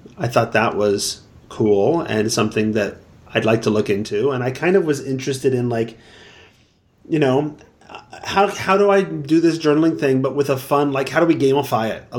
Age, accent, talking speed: 30-49, American, 205 wpm